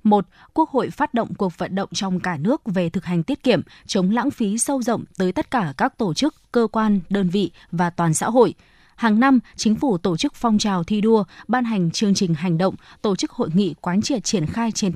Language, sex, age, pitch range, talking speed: Vietnamese, female, 20-39, 185-245 Hz, 240 wpm